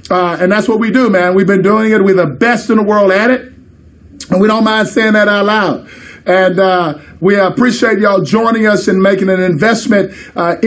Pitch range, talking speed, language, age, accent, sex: 185-220 Hz, 220 wpm, English, 50-69, American, male